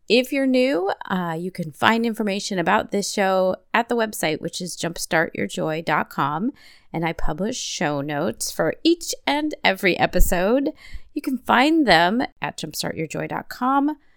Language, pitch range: English, 170-240 Hz